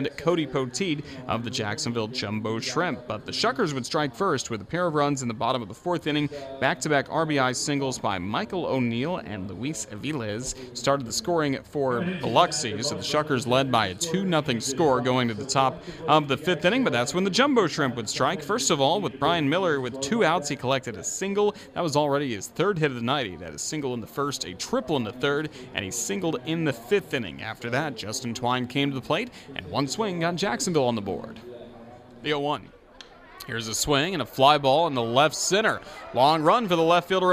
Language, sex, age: English, male, 30-49